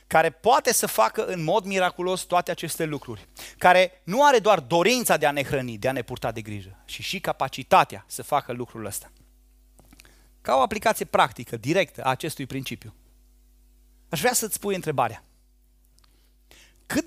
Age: 30-49